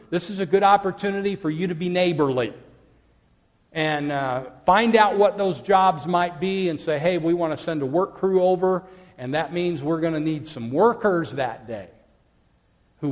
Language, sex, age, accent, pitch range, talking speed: English, male, 50-69, American, 135-180 Hz, 190 wpm